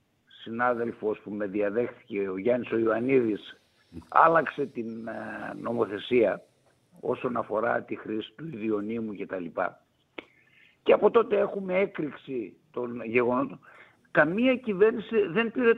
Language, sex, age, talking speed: Greek, male, 60-79, 105 wpm